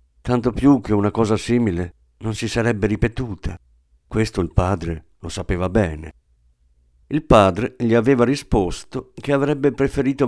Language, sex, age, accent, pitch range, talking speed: Italian, male, 50-69, native, 75-125 Hz, 140 wpm